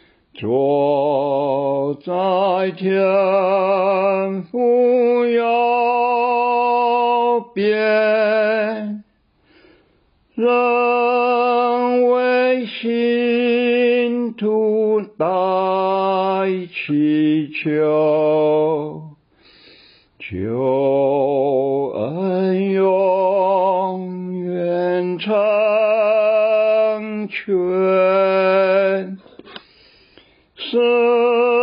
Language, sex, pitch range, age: Chinese, male, 190-245 Hz, 60-79